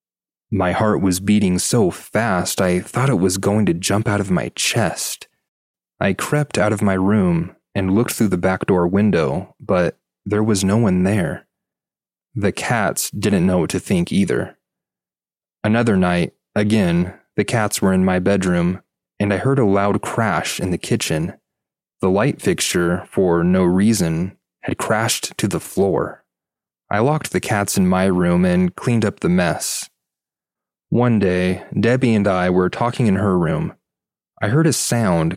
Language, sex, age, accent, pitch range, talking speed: English, male, 30-49, American, 90-110 Hz, 170 wpm